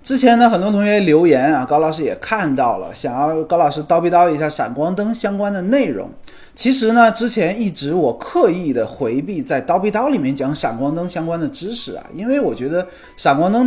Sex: male